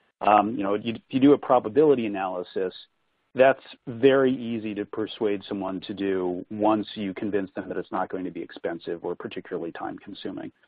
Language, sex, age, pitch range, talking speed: English, male, 40-59, 100-120 Hz, 195 wpm